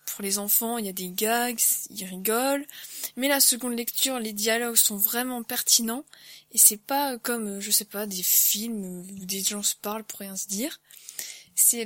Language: French